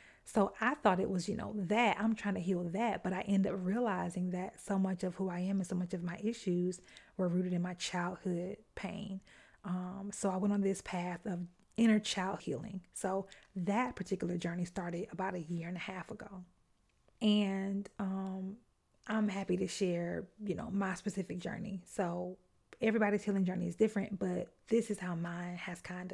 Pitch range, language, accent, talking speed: 180-205 Hz, English, American, 195 wpm